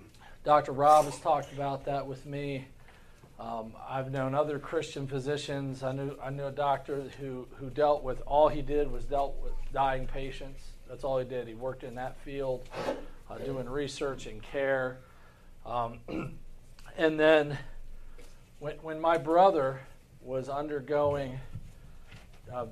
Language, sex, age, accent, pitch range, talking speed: English, male, 40-59, American, 130-150 Hz, 145 wpm